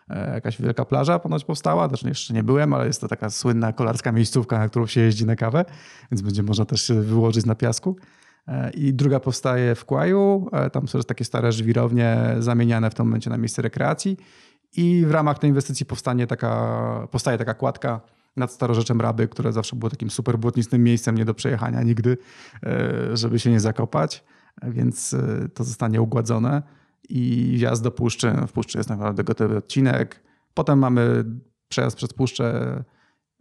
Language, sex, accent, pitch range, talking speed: Polish, male, native, 115-135 Hz, 170 wpm